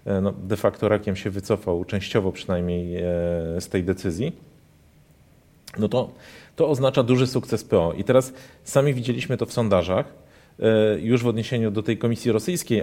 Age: 40-59